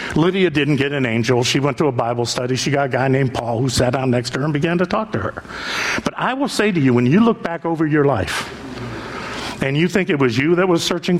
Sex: male